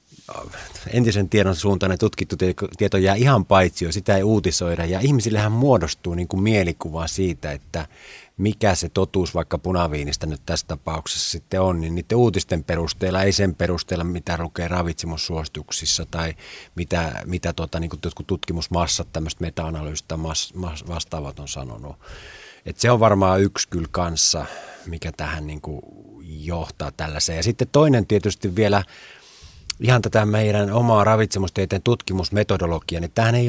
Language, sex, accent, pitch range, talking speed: Finnish, male, native, 80-100 Hz, 145 wpm